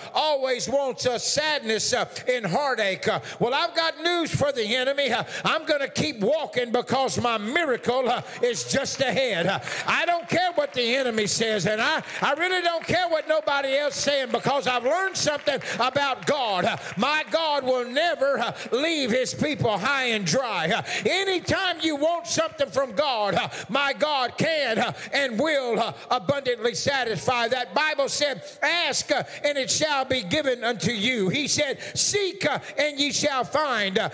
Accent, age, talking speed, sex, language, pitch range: American, 50-69, 180 wpm, male, English, 255-310 Hz